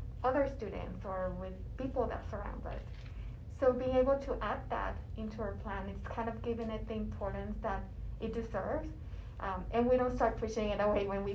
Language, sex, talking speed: English, female, 195 wpm